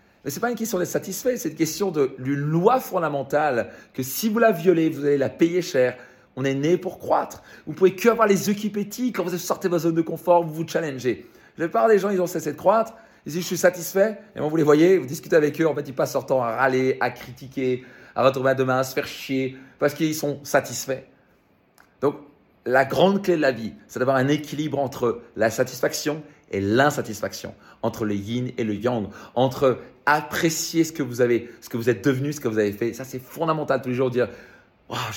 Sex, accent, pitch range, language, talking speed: male, French, 125-160 Hz, French, 240 wpm